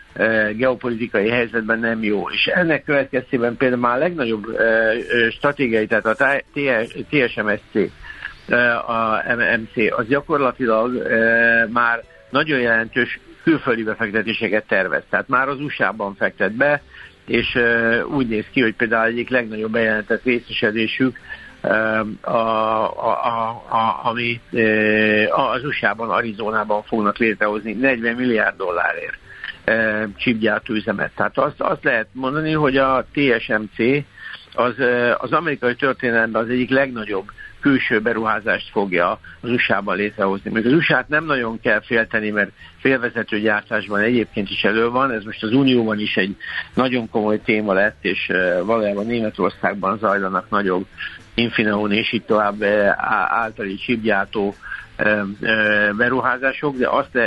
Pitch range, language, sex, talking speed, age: 110-125 Hz, Hungarian, male, 115 wpm, 60-79